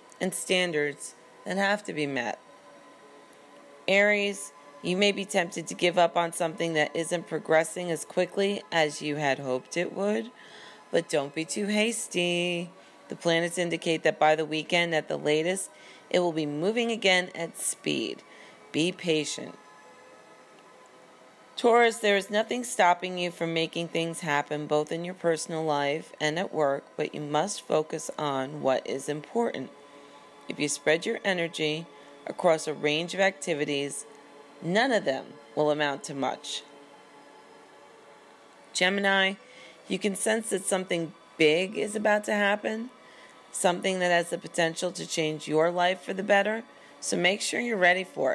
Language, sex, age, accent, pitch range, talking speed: English, female, 40-59, American, 150-195 Hz, 155 wpm